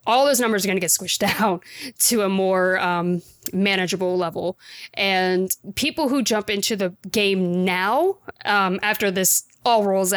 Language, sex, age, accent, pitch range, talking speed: English, female, 20-39, American, 185-215 Hz, 165 wpm